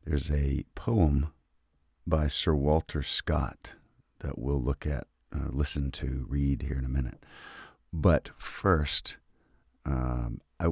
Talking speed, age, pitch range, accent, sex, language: 130 wpm, 50-69, 70-90 Hz, American, male, English